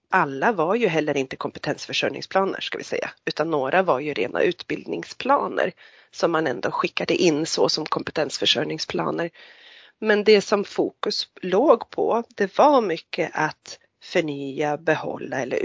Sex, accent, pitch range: female, native, 155-255 Hz